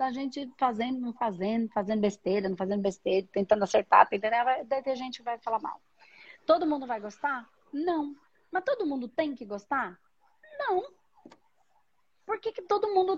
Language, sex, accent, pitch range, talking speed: Portuguese, female, Brazilian, 225-300 Hz, 160 wpm